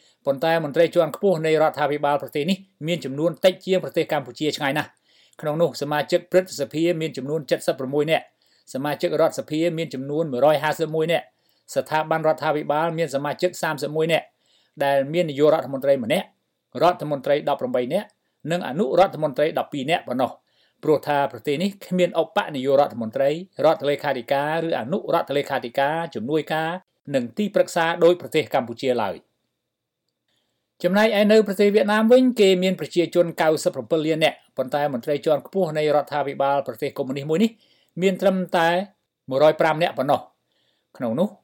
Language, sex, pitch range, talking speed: English, male, 145-175 Hz, 50 wpm